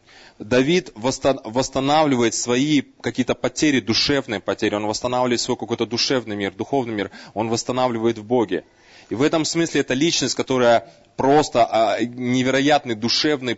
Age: 20-39